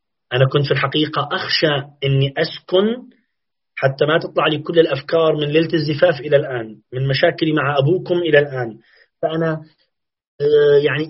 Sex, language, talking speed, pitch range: male, Arabic, 140 wpm, 140-165 Hz